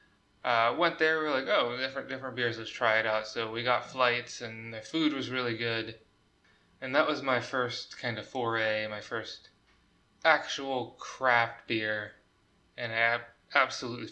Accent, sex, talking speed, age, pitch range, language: American, male, 170 wpm, 20-39, 110-130 Hz, English